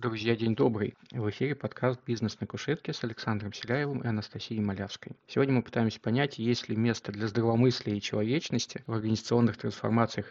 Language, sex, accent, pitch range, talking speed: Russian, male, native, 110-130 Hz, 170 wpm